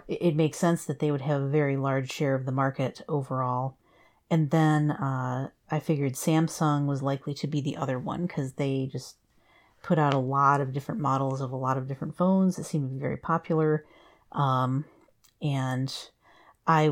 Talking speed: 190 wpm